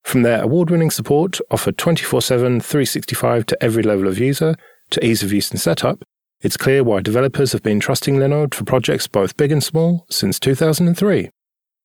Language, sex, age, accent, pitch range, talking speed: English, male, 40-59, British, 115-145 Hz, 175 wpm